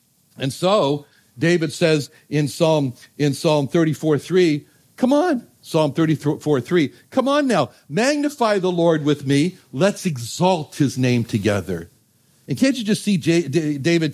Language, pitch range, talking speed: English, 145-195 Hz, 155 wpm